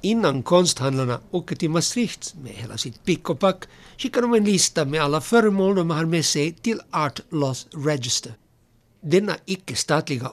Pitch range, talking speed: 130-185 Hz, 150 wpm